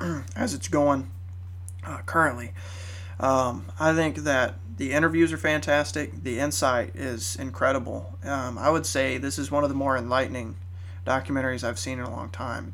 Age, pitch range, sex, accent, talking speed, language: 20-39, 90-135 Hz, male, American, 165 wpm, English